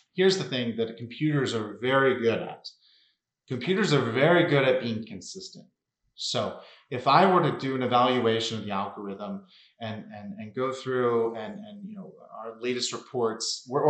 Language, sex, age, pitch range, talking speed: English, male, 30-49, 115-150 Hz, 170 wpm